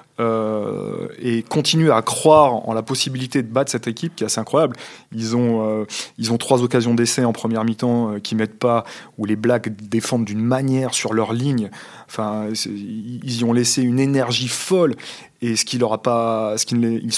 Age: 20-39